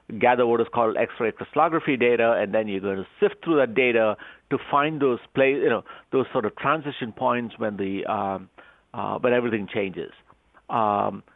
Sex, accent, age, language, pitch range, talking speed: male, Indian, 50-69, English, 110-145 Hz, 185 wpm